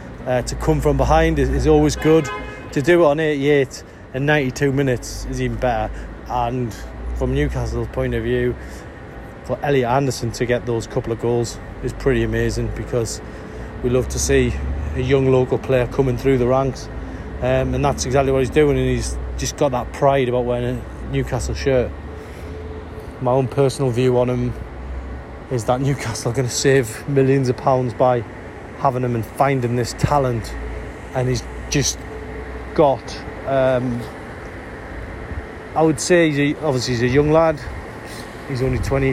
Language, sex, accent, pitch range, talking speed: English, male, British, 110-140 Hz, 170 wpm